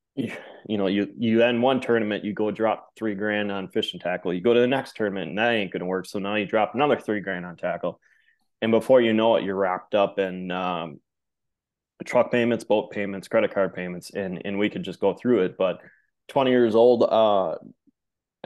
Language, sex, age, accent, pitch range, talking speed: English, male, 20-39, American, 95-115 Hz, 215 wpm